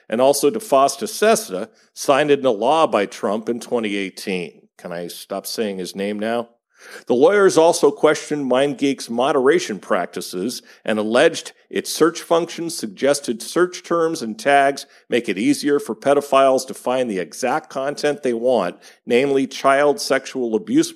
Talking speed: 145 wpm